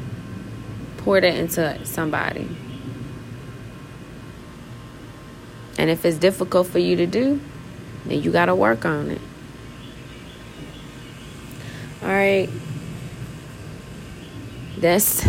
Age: 20-39